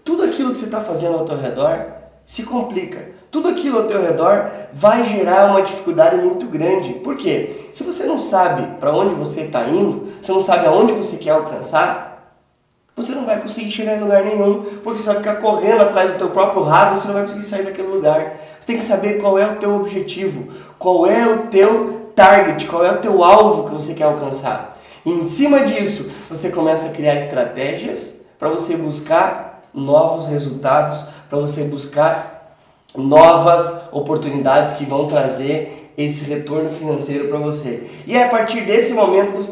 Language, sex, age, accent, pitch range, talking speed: Portuguese, male, 20-39, Brazilian, 160-225 Hz, 185 wpm